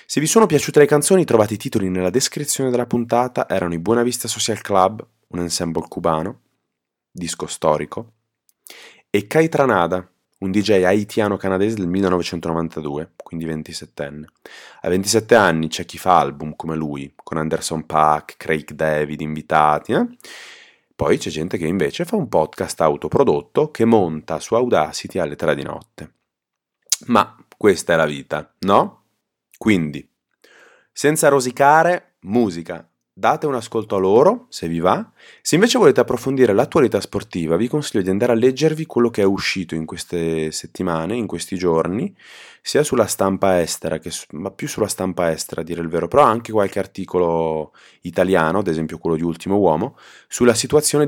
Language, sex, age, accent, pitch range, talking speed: Italian, male, 30-49, native, 80-120 Hz, 155 wpm